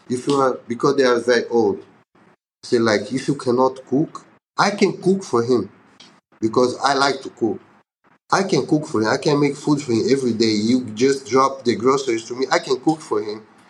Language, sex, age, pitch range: English, male, 30-49, 115-150 Hz